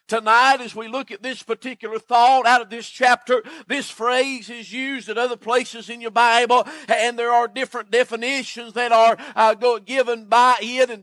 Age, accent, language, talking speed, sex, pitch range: 50-69, American, English, 185 wpm, male, 235-260 Hz